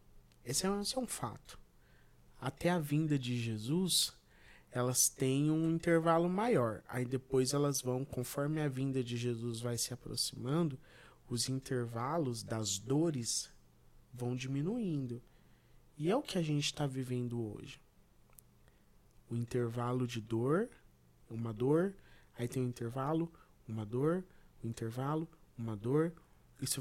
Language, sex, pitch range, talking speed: Portuguese, male, 120-155 Hz, 135 wpm